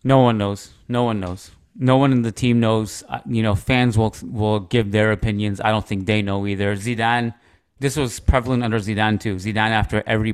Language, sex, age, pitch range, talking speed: English, male, 30-49, 100-115 Hz, 210 wpm